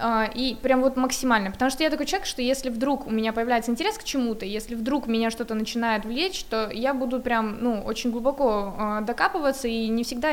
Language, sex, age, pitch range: Russian, female, 20-39, 220-270 Hz